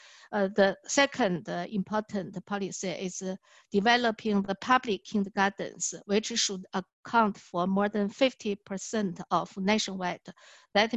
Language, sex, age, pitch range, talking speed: English, female, 60-79, 185-220 Hz, 125 wpm